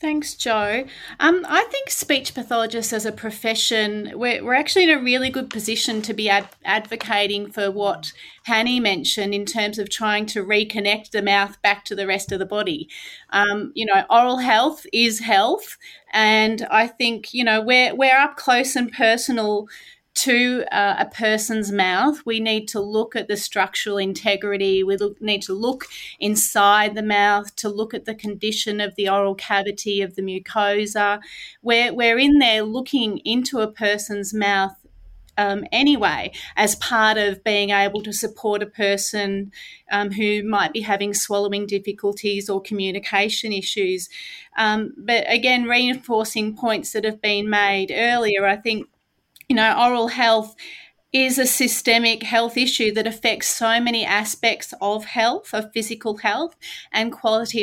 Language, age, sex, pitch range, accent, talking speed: English, 30-49, female, 205-245 Hz, Australian, 160 wpm